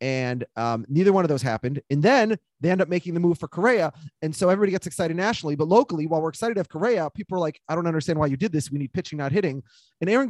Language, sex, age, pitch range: English, male, 30-49, 125-185 Hz